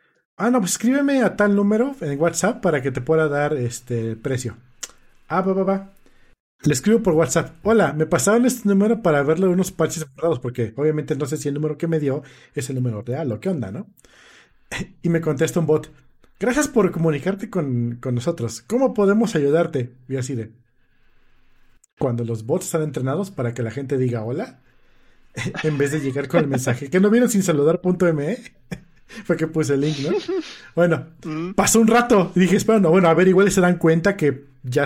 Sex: male